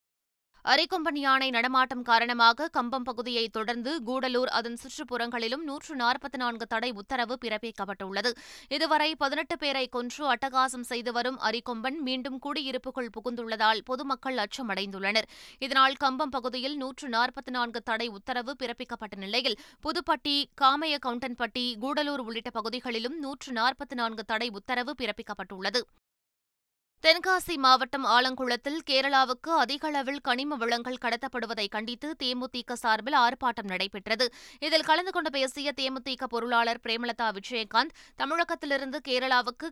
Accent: native